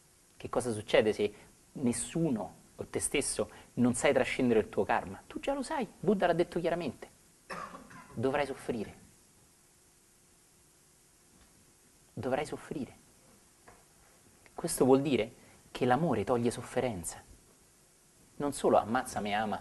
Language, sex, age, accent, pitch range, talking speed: Italian, male, 30-49, native, 125-200 Hz, 115 wpm